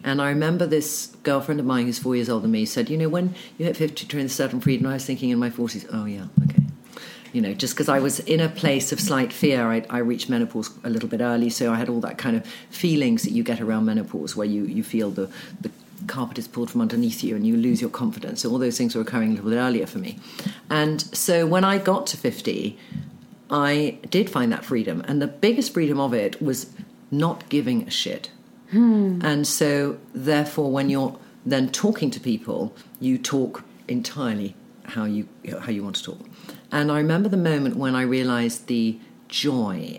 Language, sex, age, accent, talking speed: English, female, 50-69, British, 220 wpm